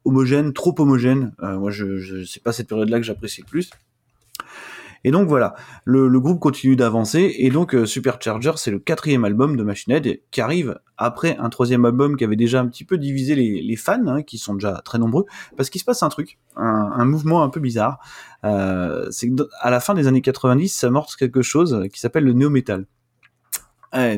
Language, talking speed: French, 215 wpm